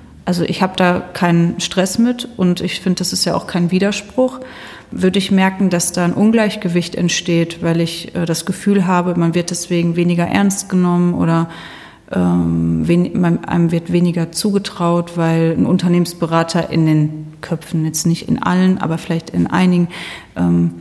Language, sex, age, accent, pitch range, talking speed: German, female, 30-49, German, 170-190 Hz, 165 wpm